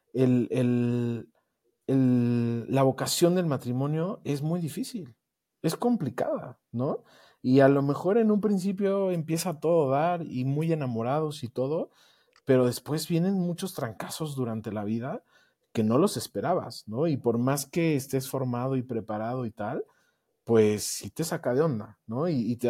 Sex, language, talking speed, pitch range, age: male, Spanish, 165 wpm, 115-155 Hz, 40-59